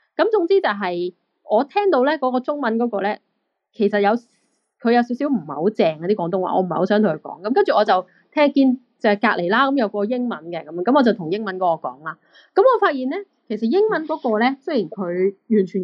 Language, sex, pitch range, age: Chinese, female, 190-255 Hz, 20-39